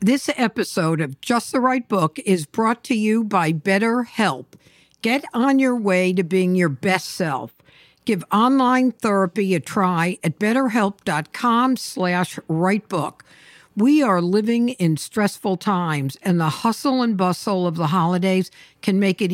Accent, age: American, 60-79